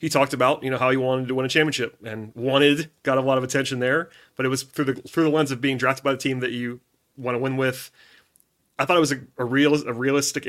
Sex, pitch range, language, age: male, 125-145 Hz, English, 30-49